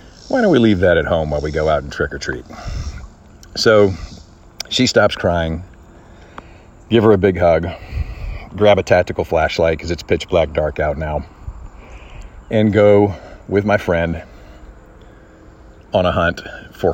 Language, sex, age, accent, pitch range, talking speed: English, male, 40-59, American, 80-100 Hz, 150 wpm